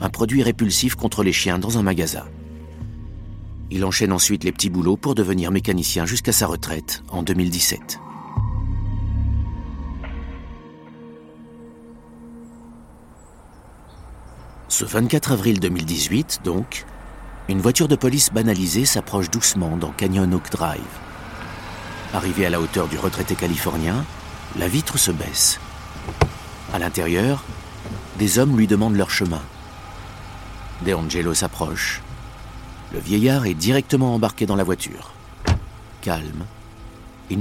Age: 50-69